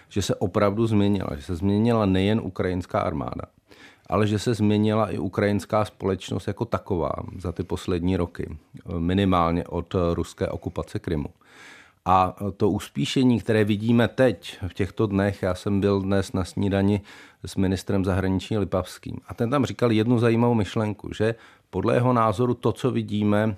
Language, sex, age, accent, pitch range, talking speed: Czech, male, 40-59, native, 95-110 Hz, 155 wpm